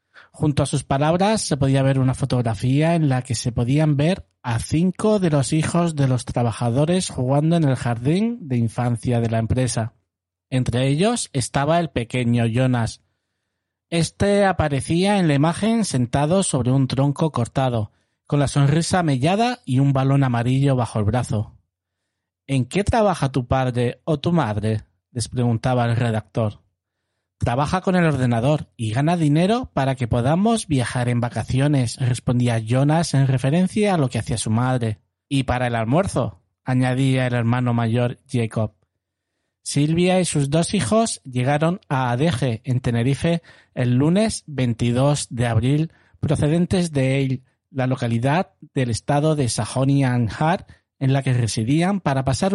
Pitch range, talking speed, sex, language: 120-150 Hz, 155 wpm, male, Spanish